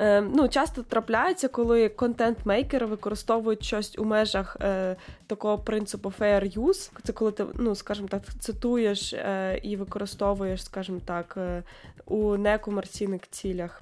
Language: Ukrainian